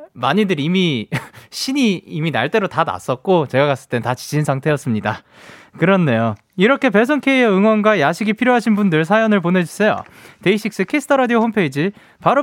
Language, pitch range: Korean, 140-215 Hz